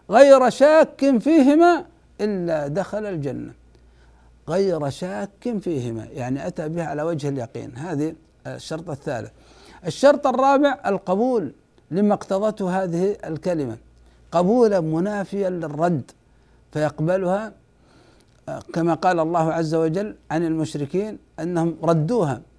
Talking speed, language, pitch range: 100 wpm, Arabic, 155-210 Hz